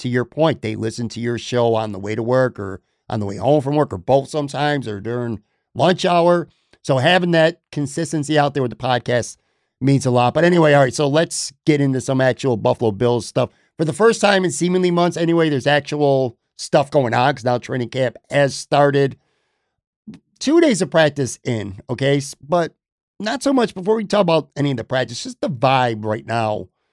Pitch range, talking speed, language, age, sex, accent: 130-180 Hz, 210 wpm, English, 50-69, male, American